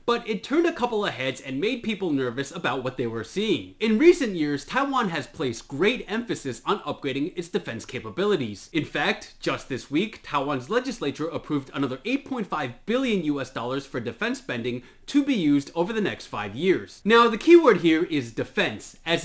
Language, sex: English, male